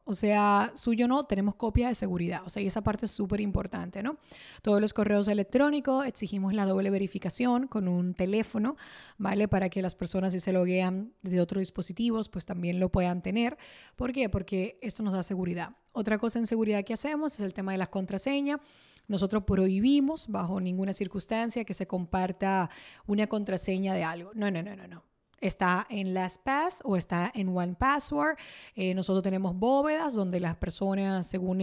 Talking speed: 180 wpm